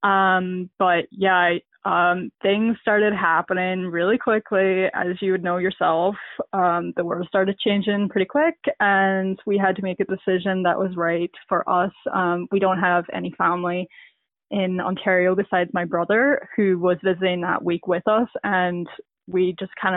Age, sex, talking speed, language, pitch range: 20-39, female, 170 wpm, English, 180-205 Hz